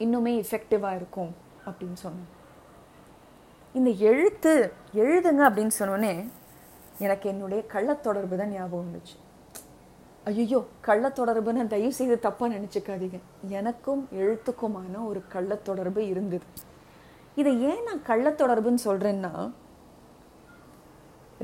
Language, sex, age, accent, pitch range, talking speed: Tamil, female, 20-39, native, 195-225 Hz, 90 wpm